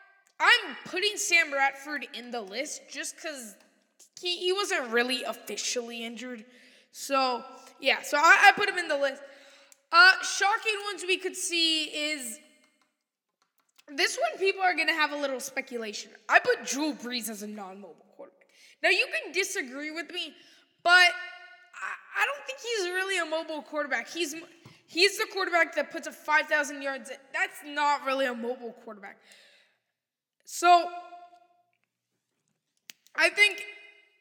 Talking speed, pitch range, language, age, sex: 150 wpm, 260-360 Hz, English, 10-29, female